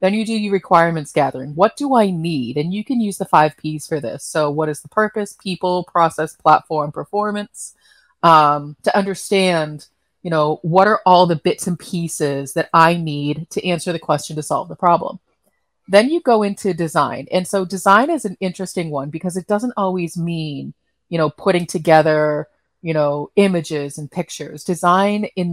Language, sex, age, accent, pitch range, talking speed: English, female, 30-49, American, 155-190 Hz, 185 wpm